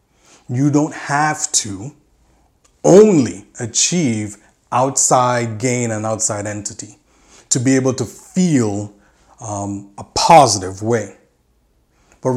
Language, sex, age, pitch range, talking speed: English, male, 30-49, 115-150 Hz, 100 wpm